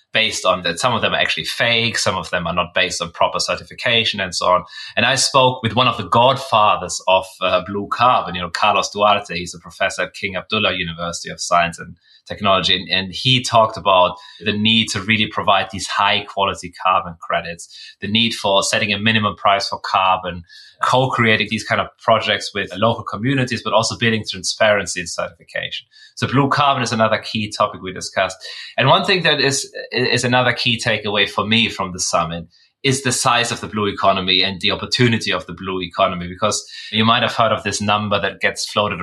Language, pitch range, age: English, 95-115 Hz, 30-49